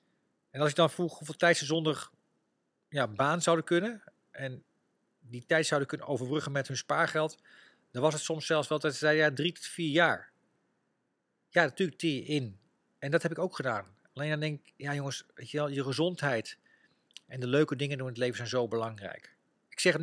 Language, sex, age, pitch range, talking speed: Dutch, male, 40-59, 135-170 Hz, 205 wpm